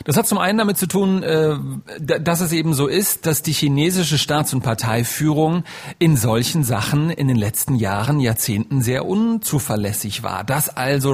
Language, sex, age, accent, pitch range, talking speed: German, male, 40-59, German, 115-145 Hz, 165 wpm